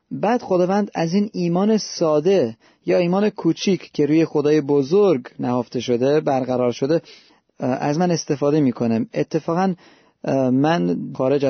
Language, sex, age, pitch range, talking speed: Persian, male, 30-49, 140-190 Hz, 125 wpm